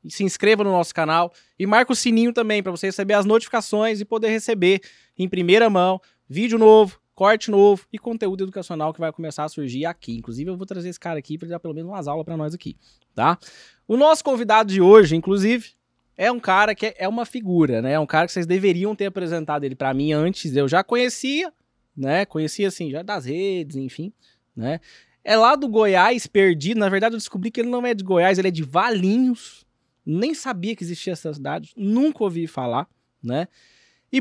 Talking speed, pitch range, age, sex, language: 210 wpm, 155-220 Hz, 20-39, male, Portuguese